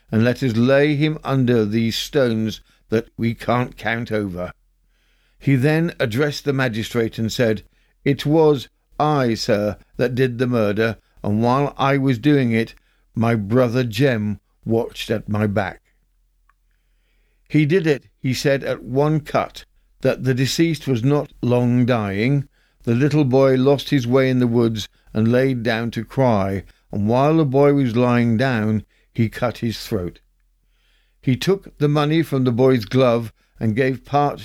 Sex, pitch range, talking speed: male, 110-140 Hz, 160 wpm